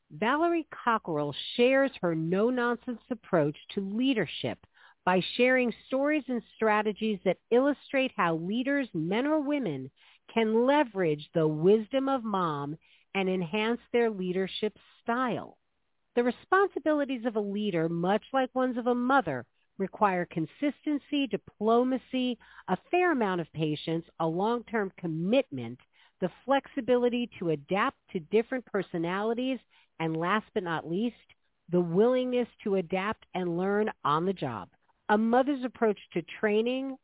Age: 50-69